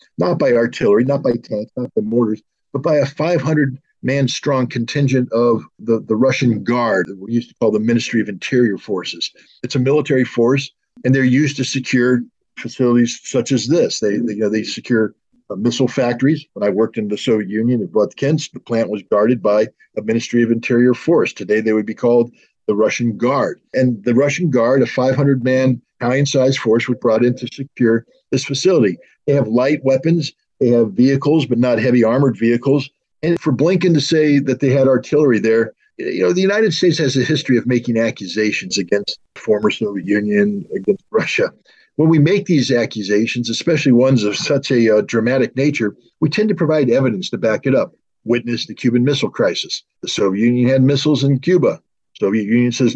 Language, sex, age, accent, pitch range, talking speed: English, male, 50-69, American, 115-140 Hz, 190 wpm